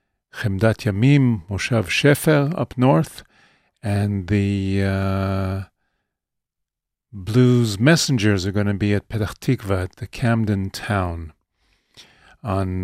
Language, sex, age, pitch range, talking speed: English, male, 50-69, 95-115 Hz, 105 wpm